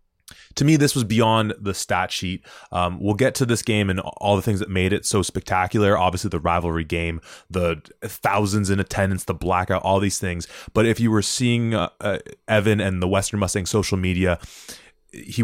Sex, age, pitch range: male, 20-39, 90-105 Hz